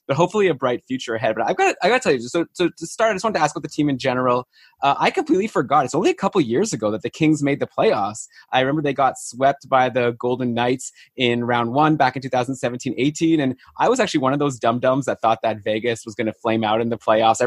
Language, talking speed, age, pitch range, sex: English, 280 wpm, 20-39, 115-135 Hz, male